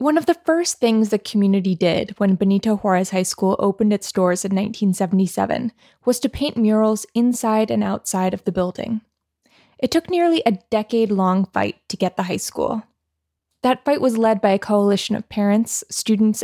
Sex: female